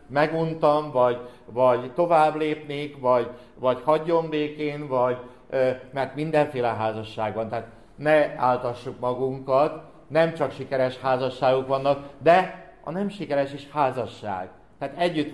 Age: 60-79